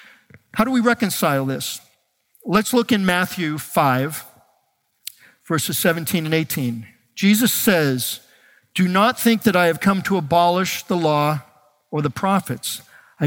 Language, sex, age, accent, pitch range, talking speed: English, male, 50-69, American, 145-200 Hz, 140 wpm